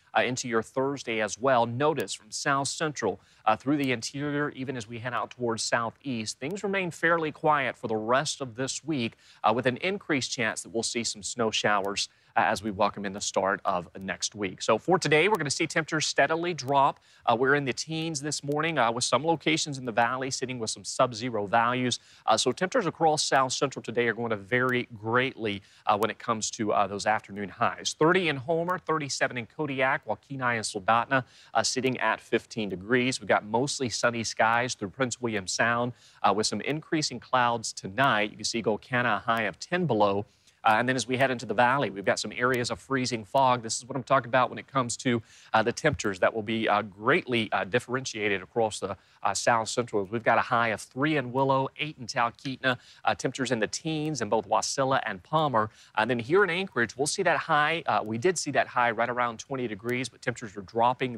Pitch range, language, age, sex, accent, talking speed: 110-140 Hz, English, 30-49, male, American, 220 wpm